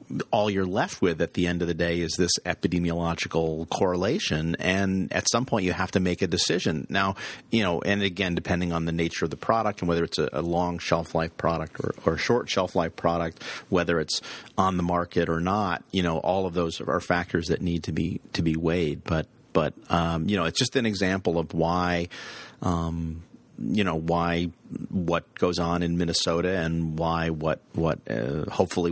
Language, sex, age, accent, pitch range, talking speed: English, male, 40-59, American, 85-95 Hz, 205 wpm